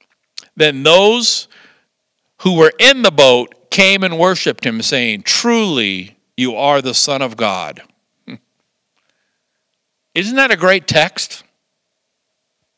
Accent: American